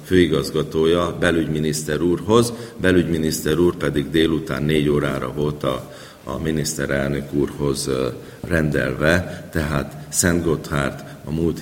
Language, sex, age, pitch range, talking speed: Hungarian, male, 50-69, 80-115 Hz, 105 wpm